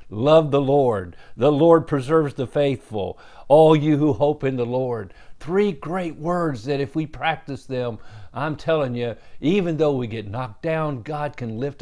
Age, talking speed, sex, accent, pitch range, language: 50-69, 180 wpm, male, American, 120-160 Hz, English